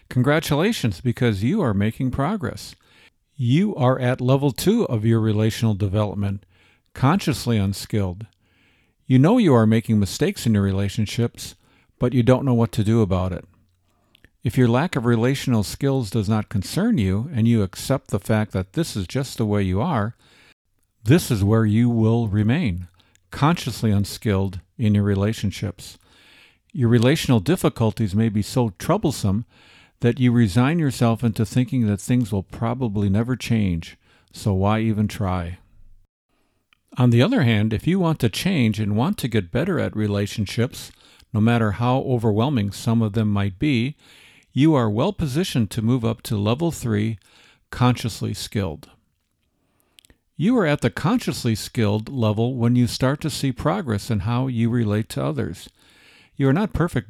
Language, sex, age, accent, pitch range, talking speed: English, male, 50-69, American, 105-125 Hz, 160 wpm